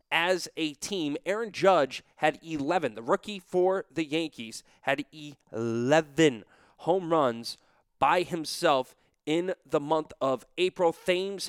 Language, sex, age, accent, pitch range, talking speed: English, male, 30-49, American, 155-200 Hz, 125 wpm